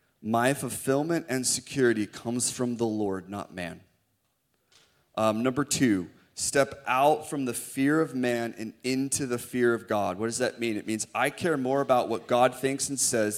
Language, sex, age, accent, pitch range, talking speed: English, male, 30-49, American, 115-135 Hz, 185 wpm